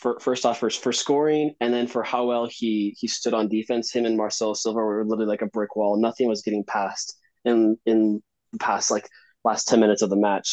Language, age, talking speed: English, 20-39, 230 wpm